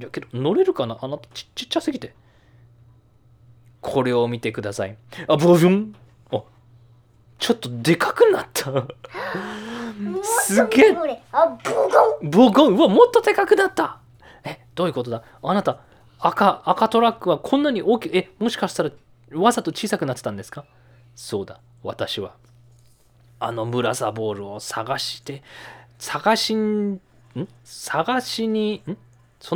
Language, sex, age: Japanese, male, 20-39